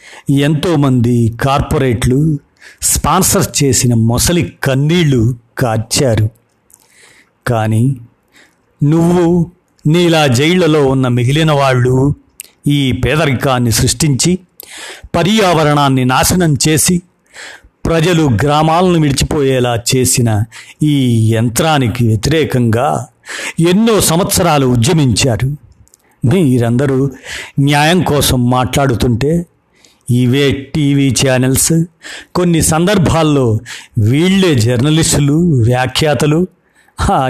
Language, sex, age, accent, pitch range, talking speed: Telugu, male, 50-69, native, 120-155 Hz, 70 wpm